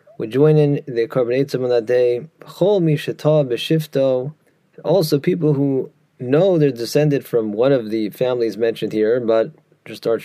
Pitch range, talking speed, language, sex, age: 120-155 Hz, 140 wpm, English, male, 30-49